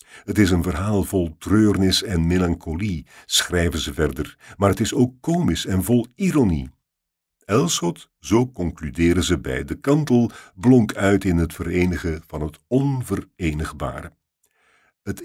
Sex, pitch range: male, 85-110 Hz